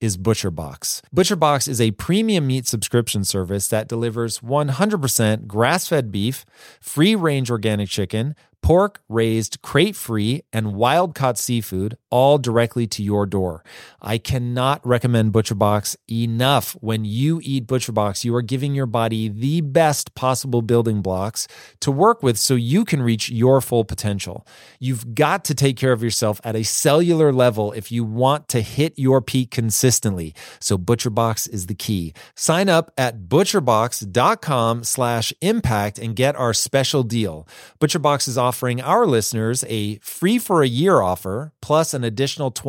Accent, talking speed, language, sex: American, 150 wpm, English, male